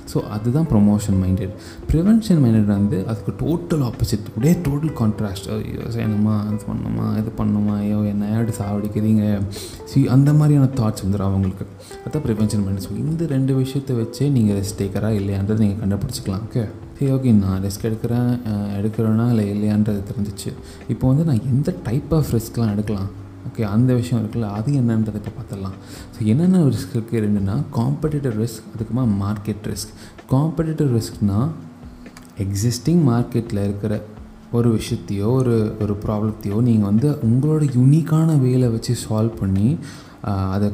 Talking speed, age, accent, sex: 140 wpm, 20-39, native, male